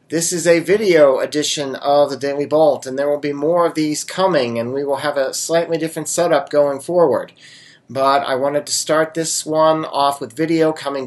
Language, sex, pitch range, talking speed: English, male, 135-160 Hz, 205 wpm